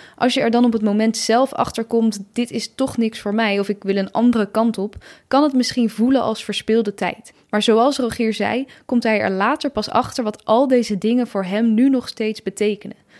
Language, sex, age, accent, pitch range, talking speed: Dutch, female, 10-29, Dutch, 205-245 Hz, 225 wpm